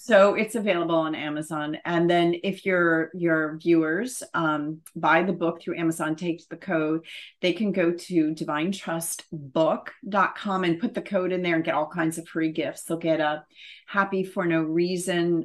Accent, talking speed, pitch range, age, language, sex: American, 180 wpm, 160-185 Hz, 40-59, English, female